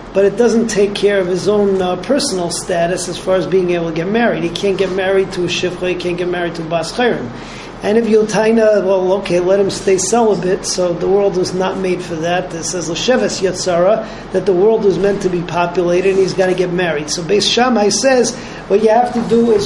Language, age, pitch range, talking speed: English, 40-59, 180-220 Hz, 235 wpm